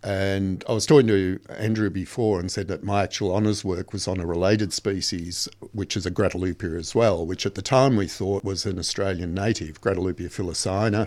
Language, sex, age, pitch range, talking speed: English, male, 50-69, 95-110 Hz, 200 wpm